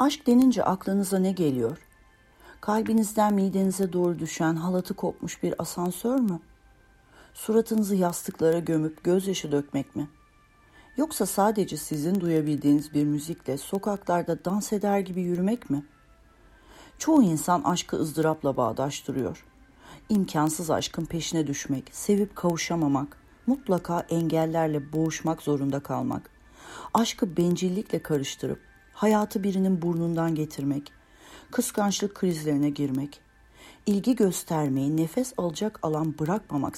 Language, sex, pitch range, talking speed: Turkish, female, 150-205 Hz, 105 wpm